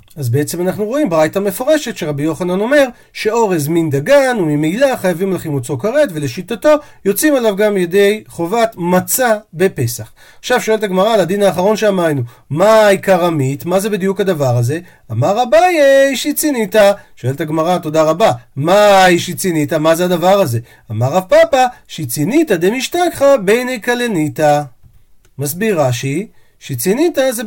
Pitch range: 155-245 Hz